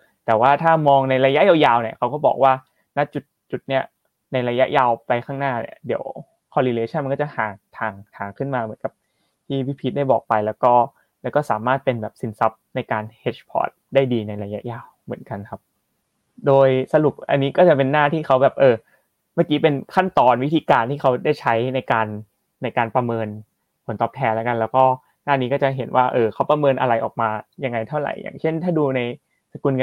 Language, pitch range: Thai, 120-145 Hz